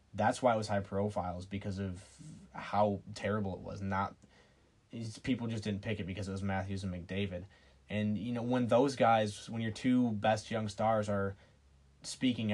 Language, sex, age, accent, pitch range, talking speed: English, male, 20-39, American, 100-115 Hz, 180 wpm